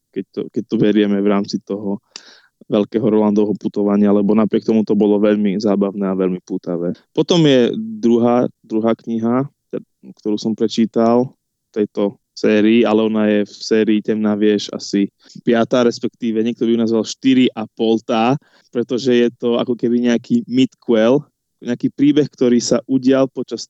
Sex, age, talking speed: male, 20-39, 150 wpm